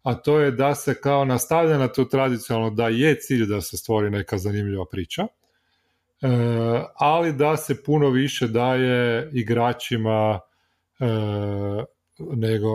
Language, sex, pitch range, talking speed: Croatian, male, 100-135 Hz, 120 wpm